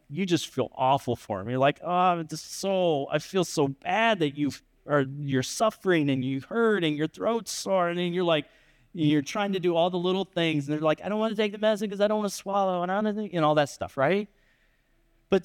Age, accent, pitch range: 30-49, American, 155-215 Hz